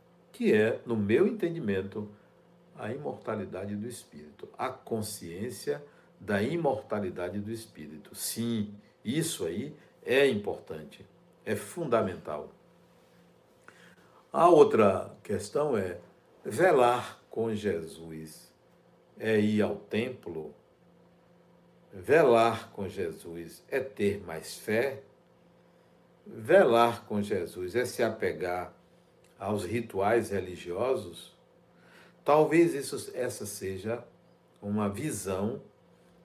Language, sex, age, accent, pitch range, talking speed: Portuguese, male, 60-79, Brazilian, 100-120 Hz, 90 wpm